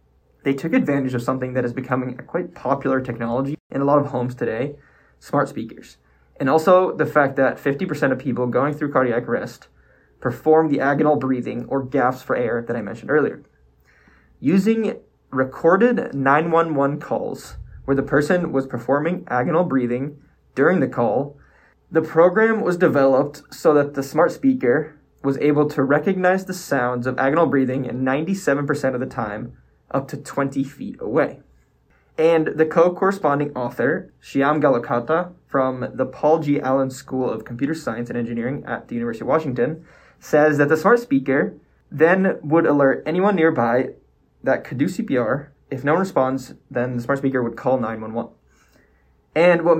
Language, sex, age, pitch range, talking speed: English, male, 20-39, 125-160 Hz, 165 wpm